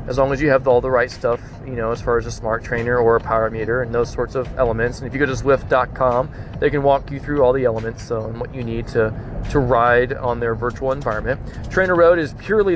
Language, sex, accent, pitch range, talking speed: English, male, American, 120-145 Hz, 265 wpm